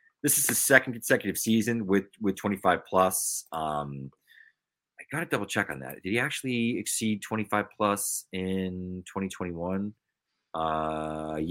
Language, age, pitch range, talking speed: English, 30-49, 85-110 Hz, 155 wpm